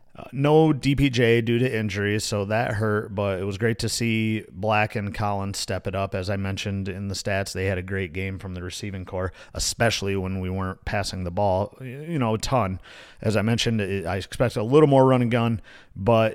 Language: English